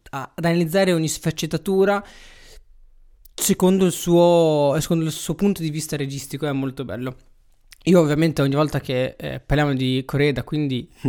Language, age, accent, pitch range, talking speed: Italian, 20-39, native, 135-170 Hz, 145 wpm